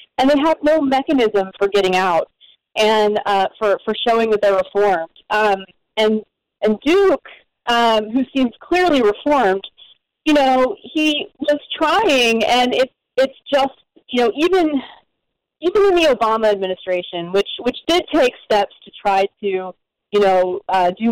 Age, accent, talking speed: 30-49, American, 155 wpm